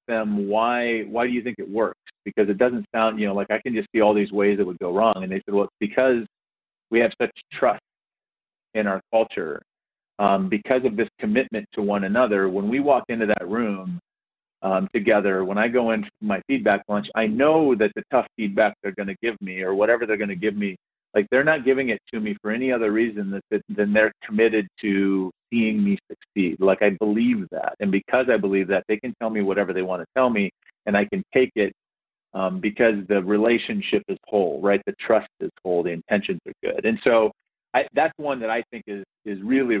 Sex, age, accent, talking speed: male, 40-59, American, 230 wpm